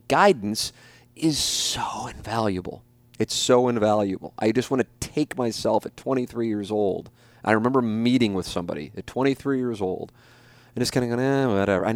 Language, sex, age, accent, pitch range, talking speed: English, male, 30-49, American, 105-130 Hz, 170 wpm